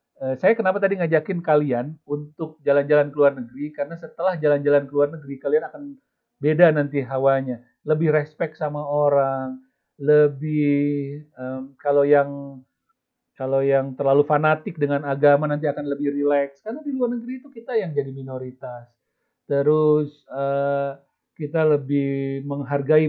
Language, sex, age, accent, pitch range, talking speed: Indonesian, male, 40-59, native, 140-170 Hz, 140 wpm